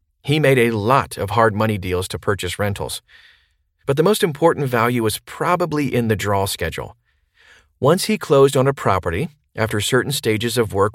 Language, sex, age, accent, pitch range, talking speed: English, male, 40-59, American, 95-135 Hz, 180 wpm